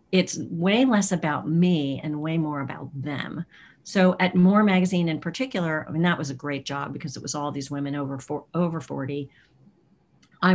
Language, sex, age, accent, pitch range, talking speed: English, female, 50-69, American, 150-185 Hz, 180 wpm